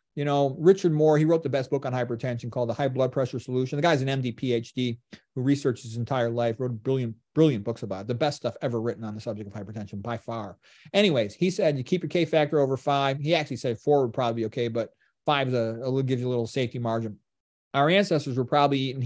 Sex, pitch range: male, 120-145 Hz